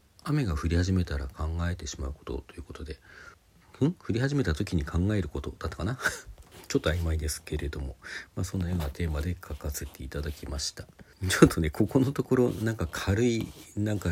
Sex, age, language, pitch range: male, 40-59, Japanese, 80-110 Hz